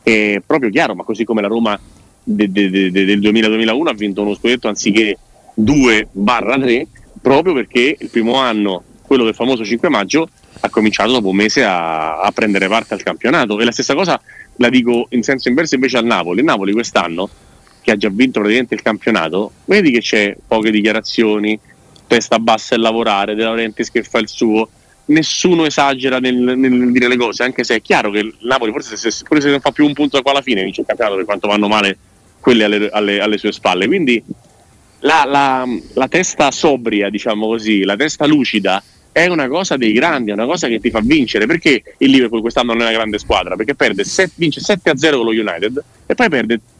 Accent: native